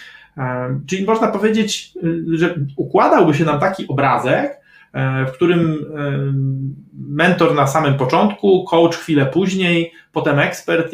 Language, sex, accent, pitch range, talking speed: Polish, male, native, 145-200 Hz, 110 wpm